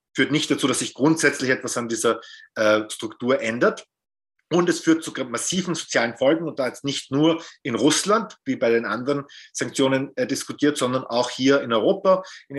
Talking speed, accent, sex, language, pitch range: 185 wpm, German, male, German, 110-145 Hz